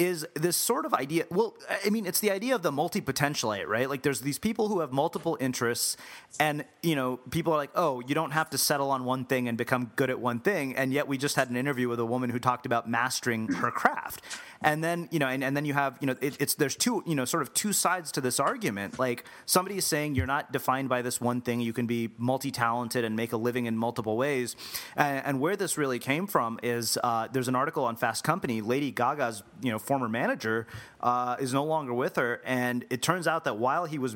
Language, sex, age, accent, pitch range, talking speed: English, male, 30-49, American, 125-160 Hz, 245 wpm